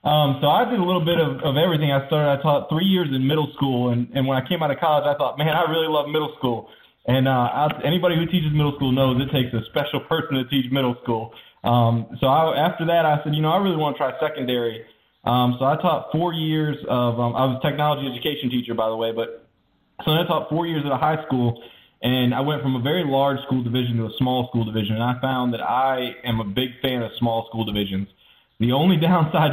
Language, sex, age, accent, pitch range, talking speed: English, male, 20-39, American, 120-145 Hz, 255 wpm